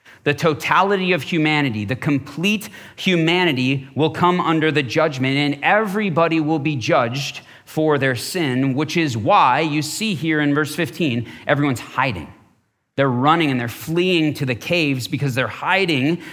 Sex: male